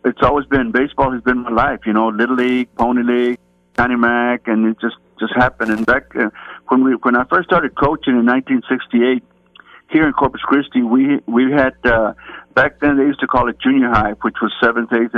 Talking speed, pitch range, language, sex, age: 215 wpm, 110-125 Hz, English, male, 60-79